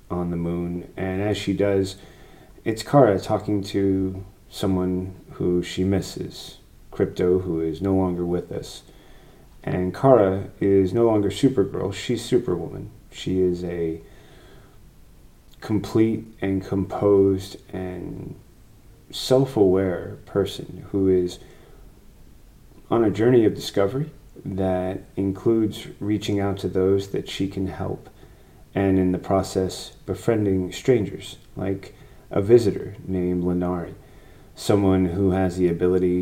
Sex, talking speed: male, 120 wpm